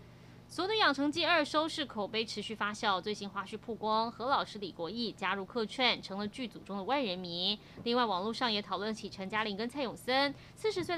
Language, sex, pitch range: Chinese, female, 205-280 Hz